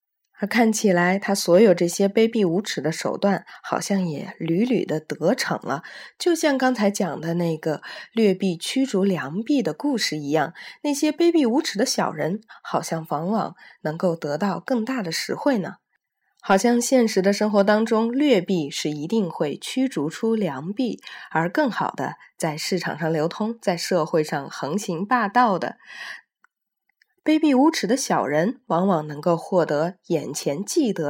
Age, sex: 20-39, female